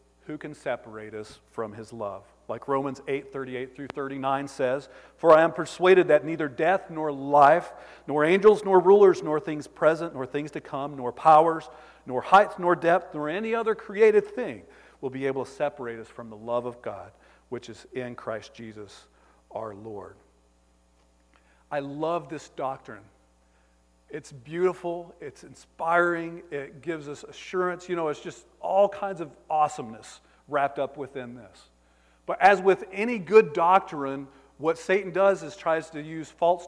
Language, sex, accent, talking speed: English, male, American, 165 wpm